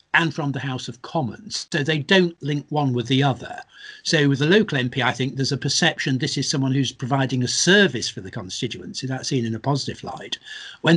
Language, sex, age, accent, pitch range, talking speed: English, male, 60-79, British, 120-155 Hz, 225 wpm